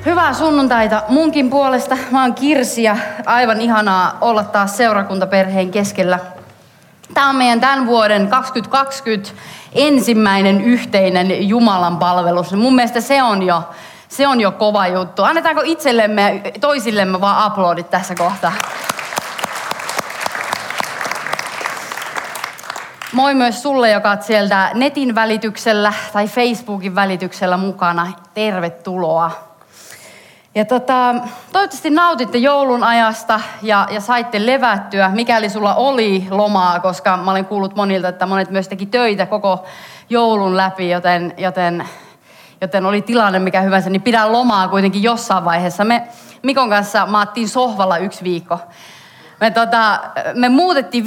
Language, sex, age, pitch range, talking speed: Finnish, female, 30-49, 190-240 Hz, 125 wpm